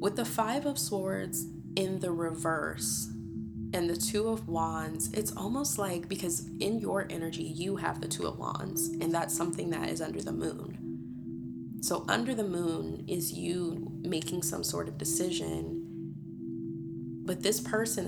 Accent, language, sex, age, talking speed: American, English, female, 20-39, 160 wpm